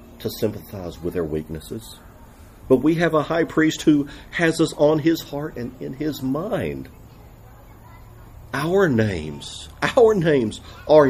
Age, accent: 50-69, American